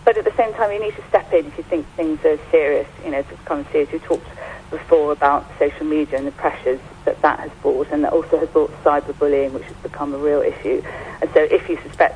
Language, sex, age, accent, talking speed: English, female, 40-59, British, 250 wpm